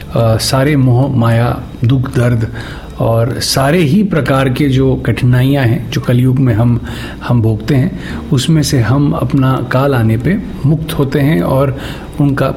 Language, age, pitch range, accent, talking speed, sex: Hindi, 50-69, 125-160 Hz, native, 155 wpm, male